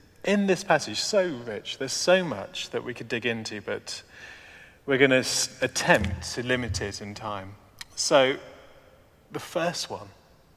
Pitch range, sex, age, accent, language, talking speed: 115-170 Hz, male, 40-59, British, English, 155 wpm